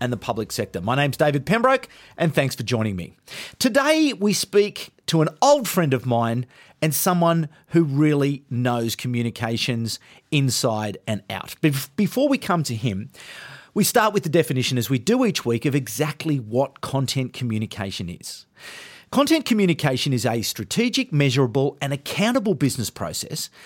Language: English